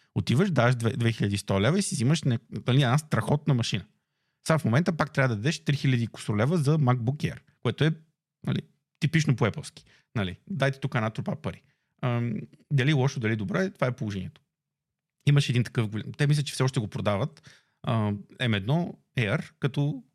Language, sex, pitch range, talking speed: Bulgarian, male, 120-155 Hz, 165 wpm